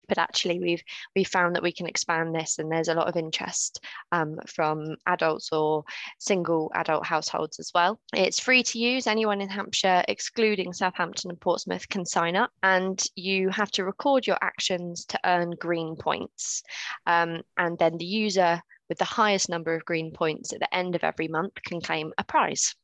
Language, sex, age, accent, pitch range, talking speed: English, female, 20-39, British, 170-195 Hz, 190 wpm